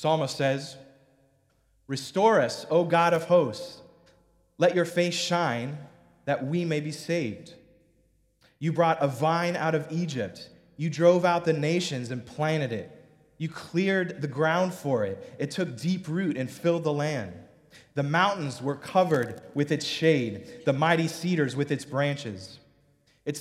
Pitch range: 135-170 Hz